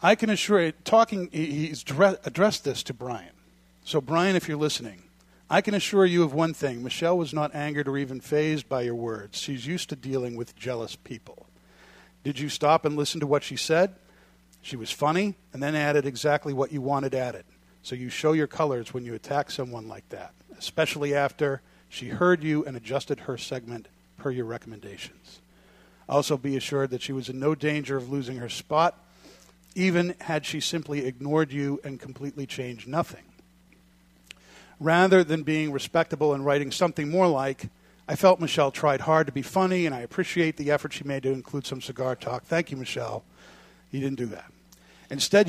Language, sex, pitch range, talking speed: English, male, 125-160 Hz, 185 wpm